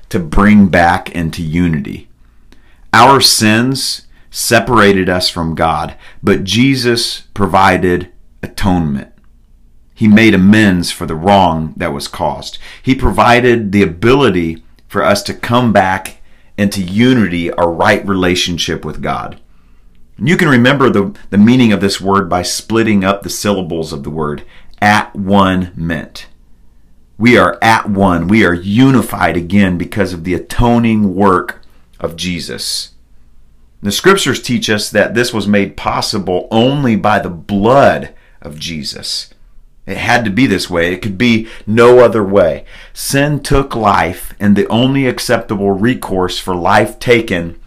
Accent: American